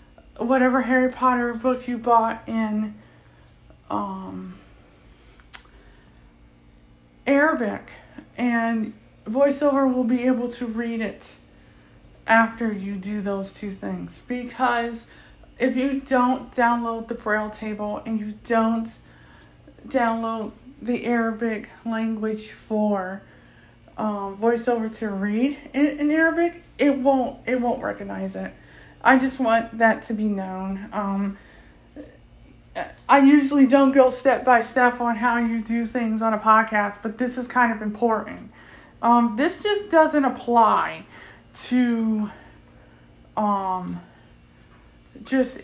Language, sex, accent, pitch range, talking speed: English, female, American, 205-250 Hz, 115 wpm